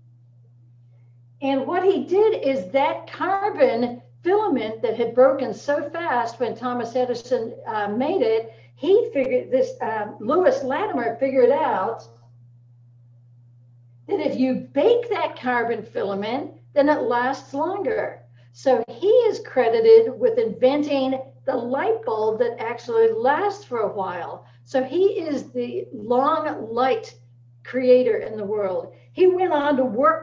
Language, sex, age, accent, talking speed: English, female, 60-79, American, 135 wpm